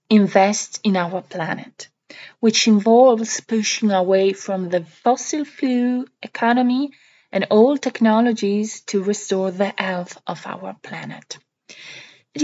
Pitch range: 195-250 Hz